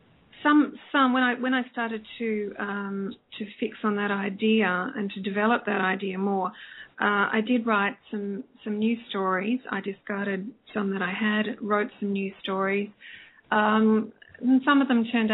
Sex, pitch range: female, 200-225 Hz